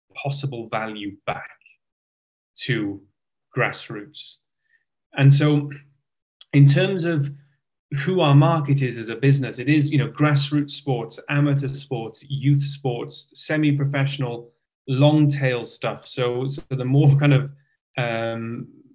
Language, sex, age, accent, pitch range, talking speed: English, male, 30-49, British, 130-150 Hz, 120 wpm